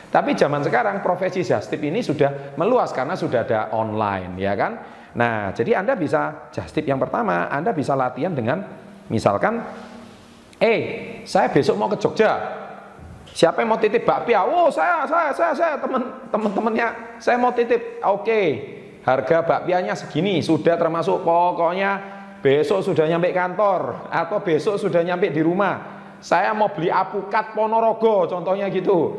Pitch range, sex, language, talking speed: 160-200 Hz, male, Indonesian, 150 wpm